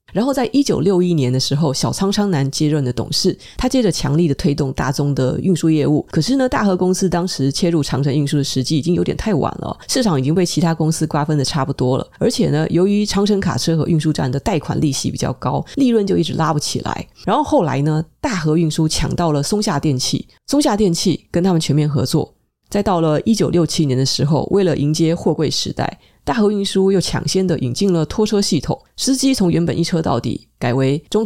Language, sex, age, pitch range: Chinese, female, 30-49, 145-190 Hz